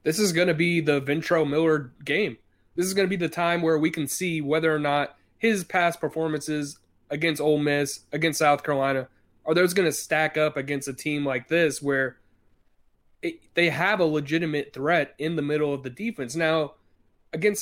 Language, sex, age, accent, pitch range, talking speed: English, male, 20-39, American, 140-180 Hz, 200 wpm